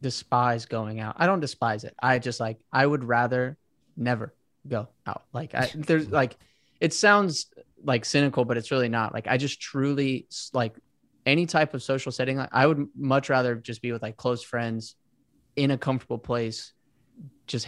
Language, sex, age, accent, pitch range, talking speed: English, male, 20-39, American, 120-145 Hz, 185 wpm